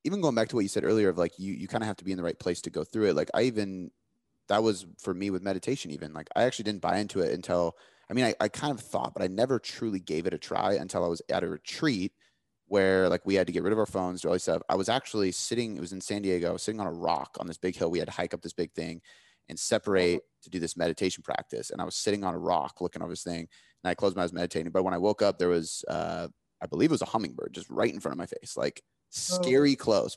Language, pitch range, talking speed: English, 90-105 Hz, 305 wpm